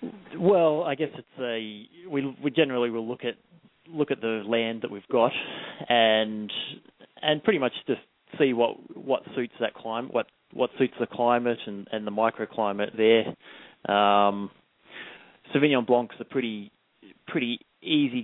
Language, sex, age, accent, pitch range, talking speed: English, male, 30-49, Australian, 105-120 Hz, 155 wpm